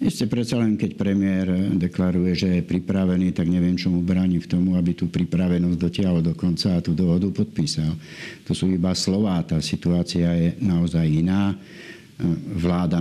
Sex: male